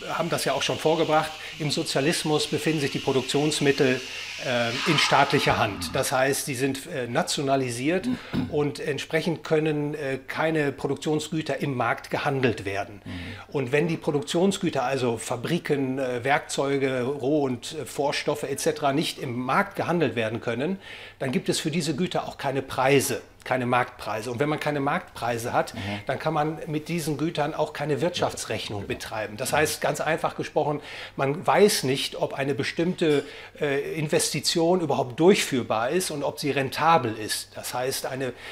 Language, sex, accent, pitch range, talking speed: English, male, German, 130-160 Hz, 150 wpm